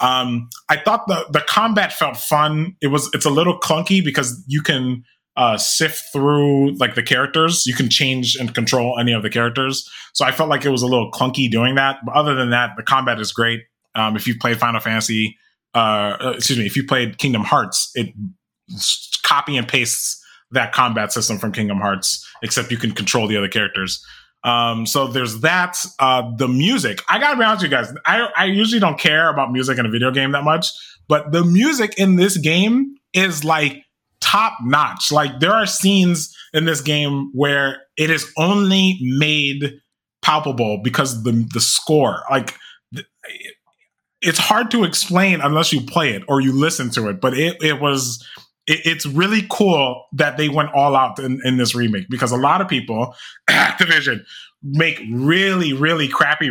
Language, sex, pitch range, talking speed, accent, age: English, male, 125-165 Hz, 185 wpm, American, 20-39